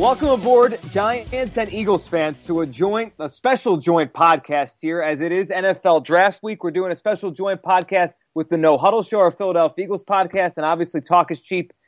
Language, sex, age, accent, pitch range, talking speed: English, male, 30-49, American, 155-195 Hz, 200 wpm